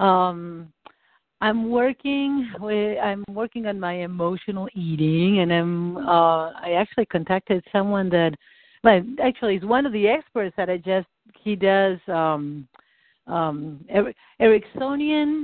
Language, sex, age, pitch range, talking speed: English, female, 50-69, 165-230 Hz, 130 wpm